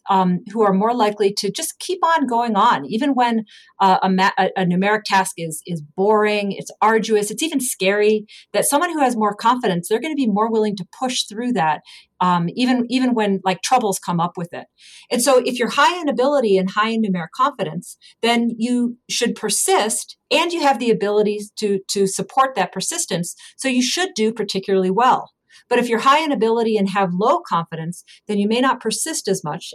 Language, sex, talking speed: English, female, 205 wpm